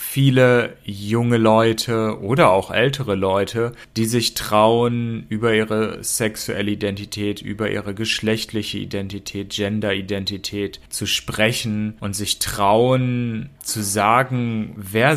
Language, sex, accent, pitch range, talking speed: German, male, German, 105-120 Hz, 105 wpm